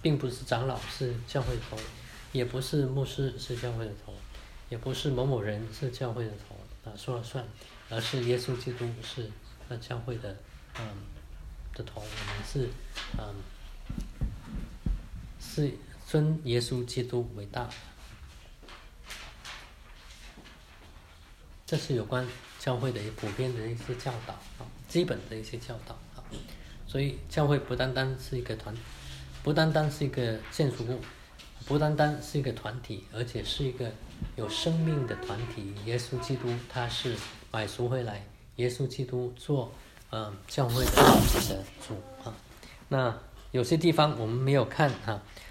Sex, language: male, English